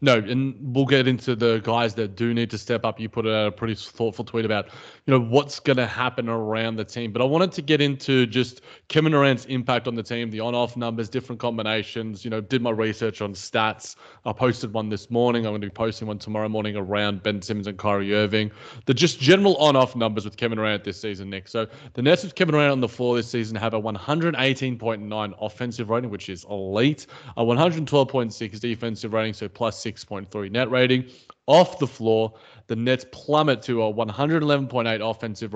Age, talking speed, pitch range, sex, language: 20-39, 210 wpm, 110-135 Hz, male, English